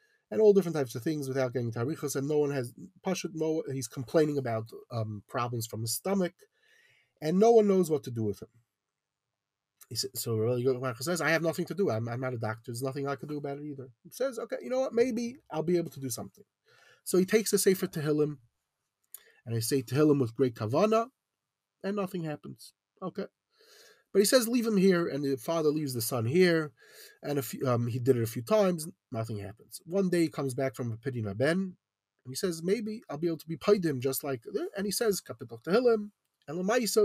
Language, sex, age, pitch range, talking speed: English, male, 30-49, 125-185 Hz, 230 wpm